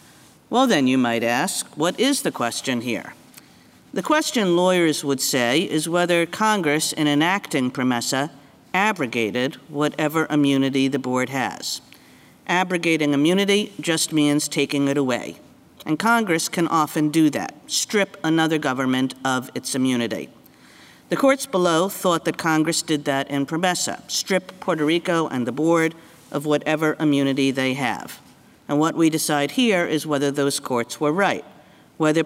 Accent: American